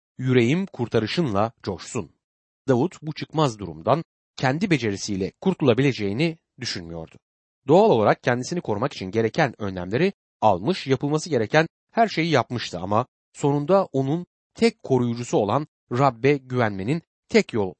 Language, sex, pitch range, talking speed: Turkish, male, 105-160 Hz, 115 wpm